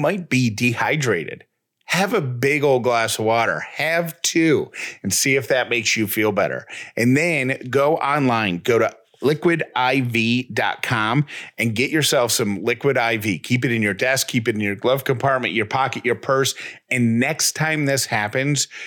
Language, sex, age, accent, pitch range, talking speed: English, male, 30-49, American, 110-140 Hz, 170 wpm